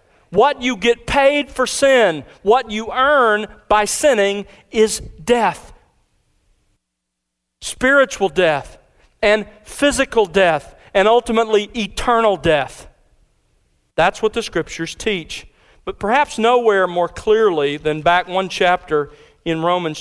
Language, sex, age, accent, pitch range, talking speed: English, male, 40-59, American, 165-230 Hz, 115 wpm